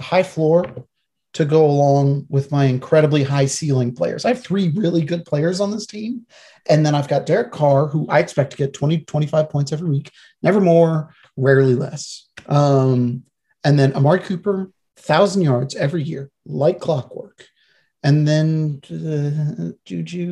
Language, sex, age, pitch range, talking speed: English, male, 30-49, 135-170 Hz, 160 wpm